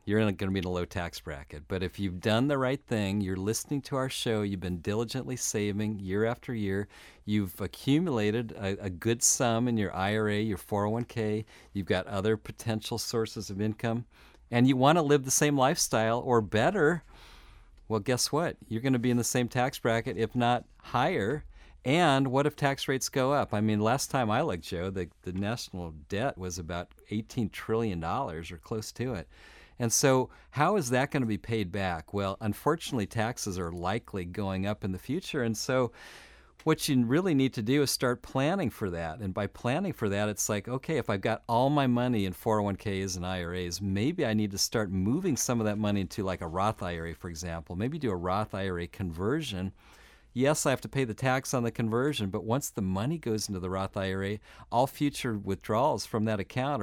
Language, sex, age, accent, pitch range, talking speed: English, male, 40-59, American, 95-125 Hz, 205 wpm